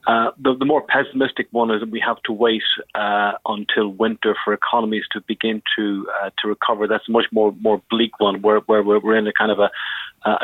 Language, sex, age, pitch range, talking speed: English, male, 30-49, 105-120 Hz, 225 wpm